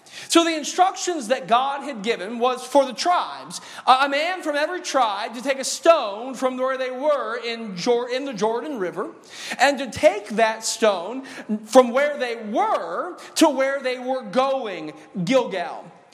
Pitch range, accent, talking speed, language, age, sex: 220-285 Hz, American, 160 wpm, English, 40-59, male